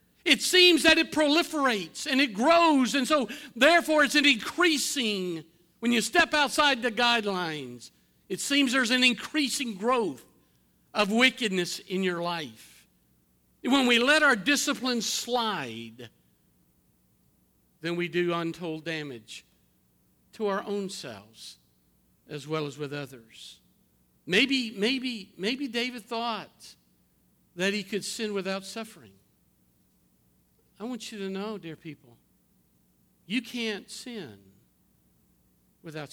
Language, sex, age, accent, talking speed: English, male, 50-69, American, 120 wpm